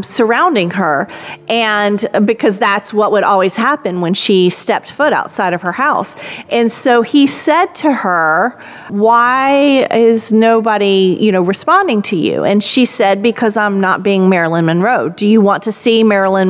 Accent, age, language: American, 40-59, English